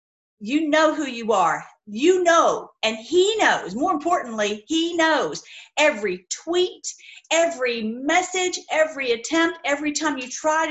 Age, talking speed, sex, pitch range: 40-59, 135 wpm, female, 225-310 Hz